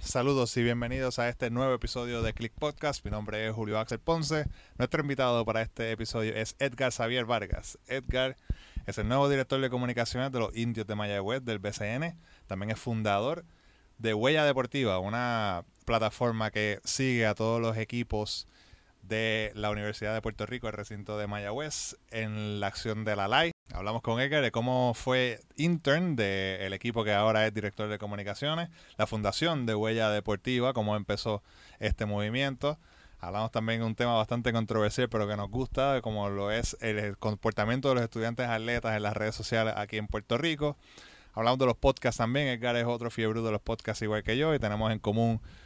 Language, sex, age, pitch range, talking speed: Spanish, male, 20-39, 105-125 Hz, 185 wpm